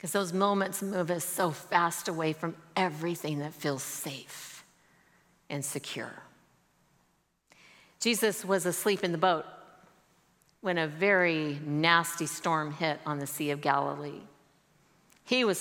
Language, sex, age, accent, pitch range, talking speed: English, female, 50-69, American, 160-225 Hz, 130 wpm